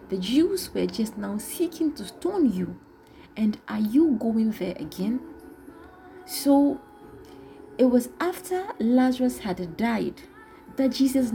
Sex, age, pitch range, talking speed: female, 30-49, 210-300 Hz, 125 wpm